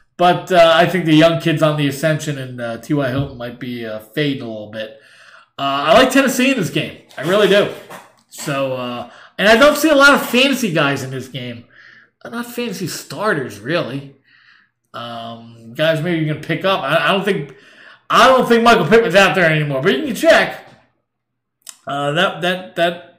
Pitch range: 145-205 Hz